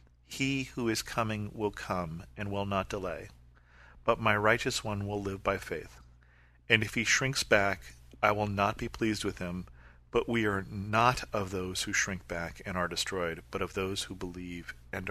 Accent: American